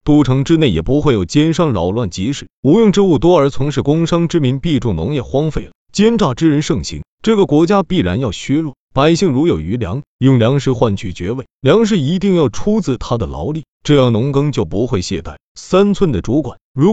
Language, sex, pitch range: Chinese, male, 120-160 Hz